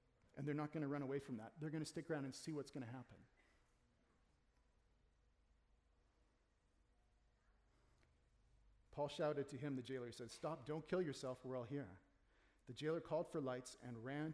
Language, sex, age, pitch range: English, male, 40-59, 120-155 Hz